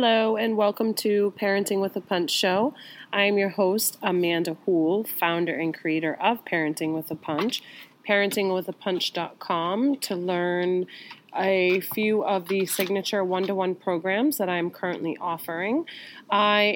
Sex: female